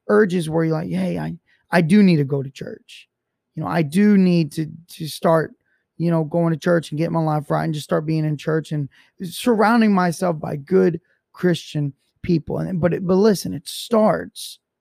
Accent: American